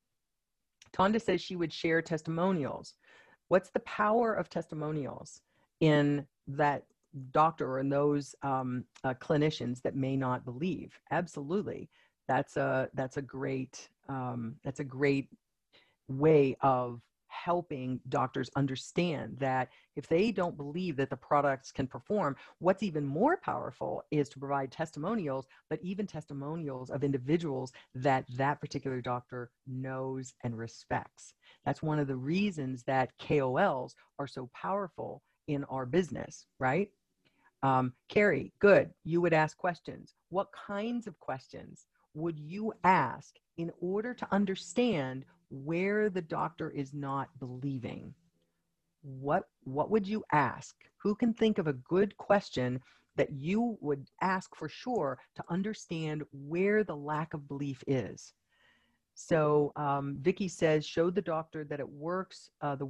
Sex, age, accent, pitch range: female, 40-59, American, 135-175 Hz